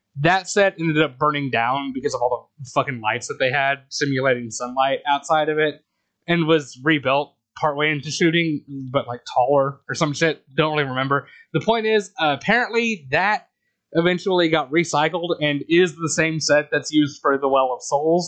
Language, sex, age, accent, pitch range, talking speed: English, male, 20-39, American, 135-175 Hz, 185 wpm